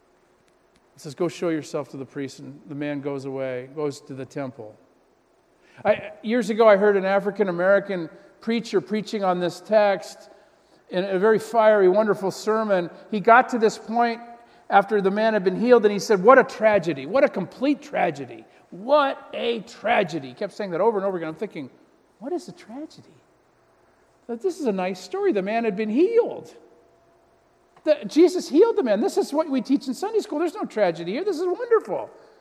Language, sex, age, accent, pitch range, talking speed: English, male, 50-69, American, 170-235 Hz, 190 wpm